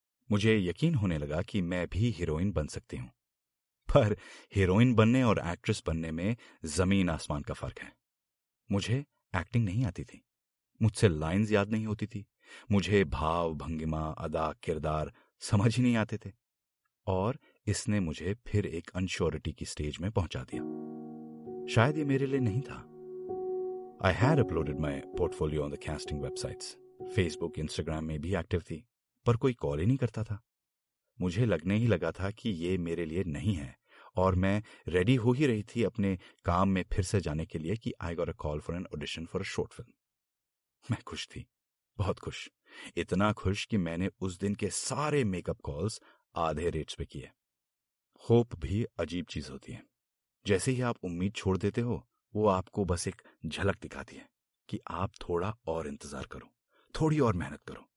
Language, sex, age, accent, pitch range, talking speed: Hindi, male, 40-59, native, 85-115 Hz, 175 wpm